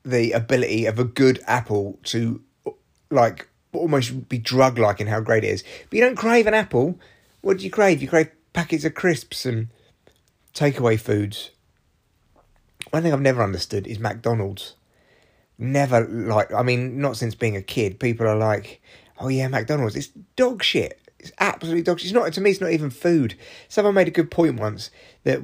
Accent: British